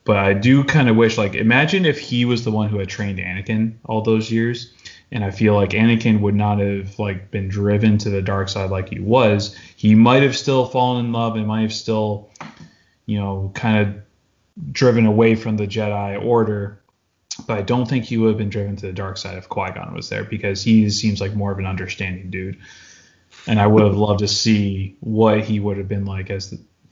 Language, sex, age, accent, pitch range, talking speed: English, male, 20-39, American, 100-110 Hz, 225 wpm